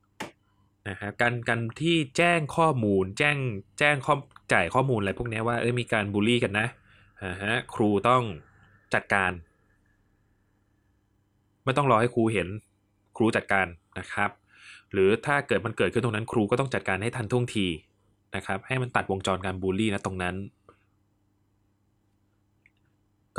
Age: 20-39